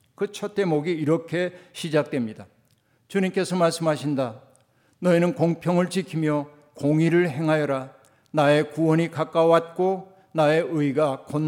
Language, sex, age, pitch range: Korean, male, 50-69, 130-175 Hz